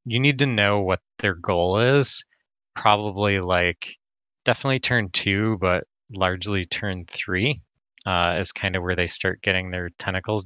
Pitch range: 90-110 Hz